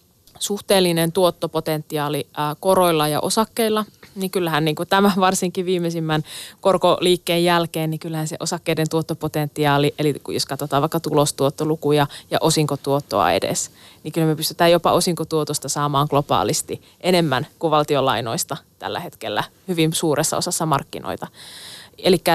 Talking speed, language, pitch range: 125 wpm, Finnish, 155-175 Hz